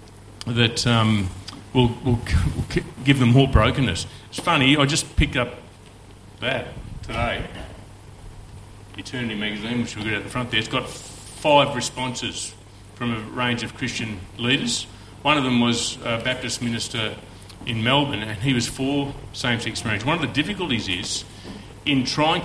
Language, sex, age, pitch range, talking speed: English, male, 40-59, 110-130 Hz, 160 wpm